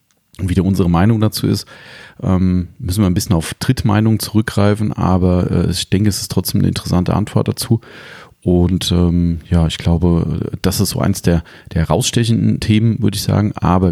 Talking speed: 175 wpm